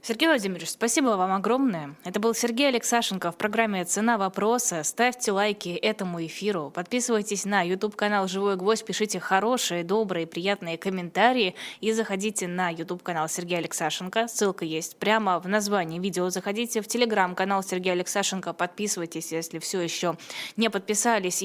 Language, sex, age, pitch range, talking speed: Russian, female, 20-39, 170-220 Hz, 145 wpm